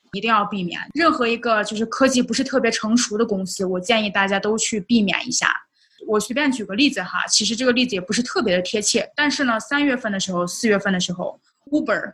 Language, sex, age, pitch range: Chinese, female, 20-39, 200-245 Hz